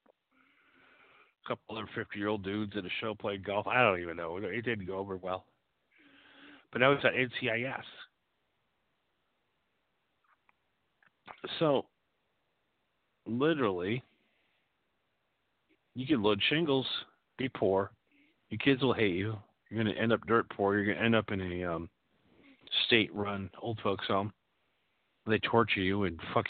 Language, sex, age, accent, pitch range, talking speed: English, male, 50-69, American, 95-115 Hz, 140 wpm